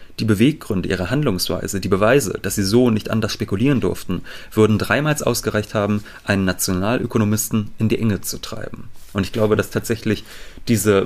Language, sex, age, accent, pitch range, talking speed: German, male, 30-49, German, 95-115 Hz, 165 wpm